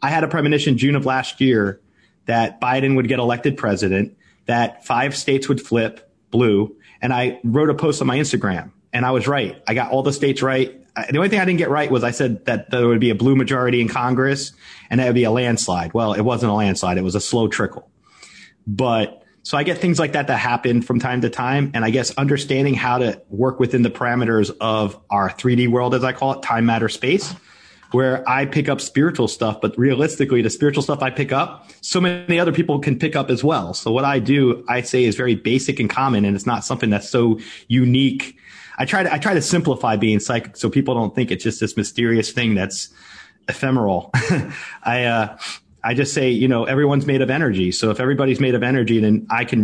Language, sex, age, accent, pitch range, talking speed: English, male, 30-49, American, 110-135 Hz, 225 wpm